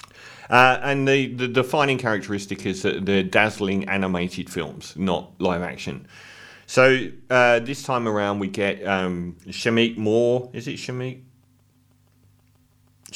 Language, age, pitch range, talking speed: English, 40-59, 95-115 Hz, 130 wpm